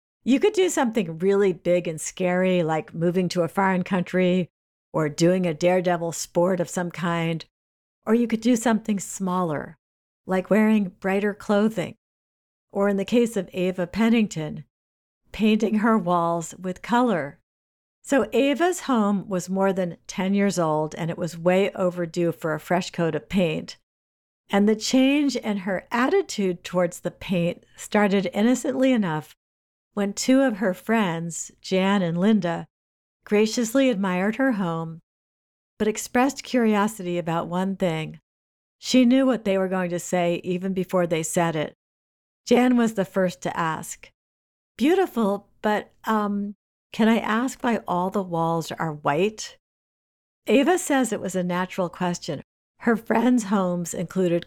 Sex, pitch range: female, 170-210 Hz